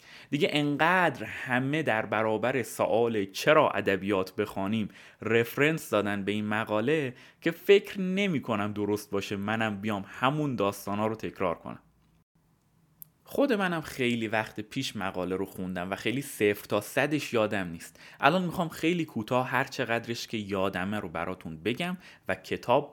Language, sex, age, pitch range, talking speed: Persian, male, 30-49, 105-150 Hz, 145 wpm